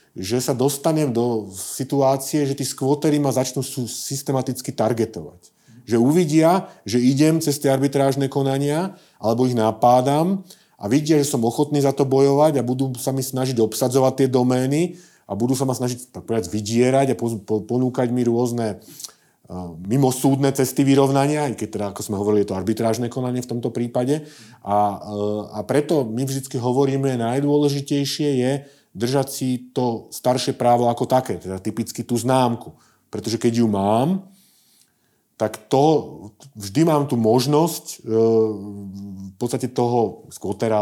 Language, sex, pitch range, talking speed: Slovak, male, 110-140 Hz, 155 wpm